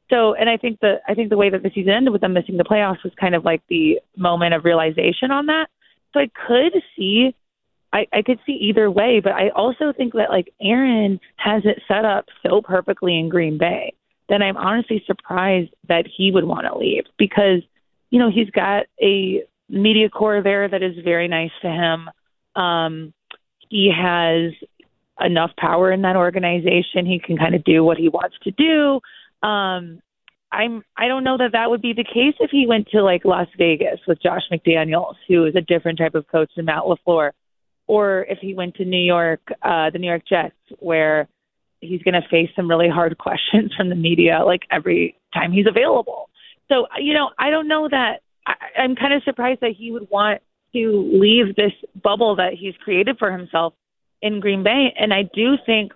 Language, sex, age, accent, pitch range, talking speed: English, female, 30-49, American, 175-230 Hz, 205 wpm